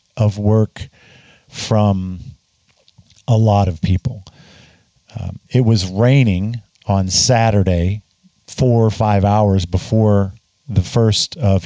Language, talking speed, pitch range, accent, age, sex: English, 110 wpm, 100-125 Hz, American, 50-69, male